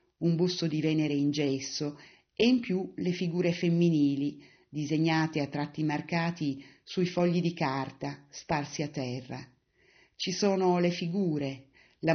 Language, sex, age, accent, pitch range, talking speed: Italian, female, 40-59, native, 145-170 Hz, 140 wpm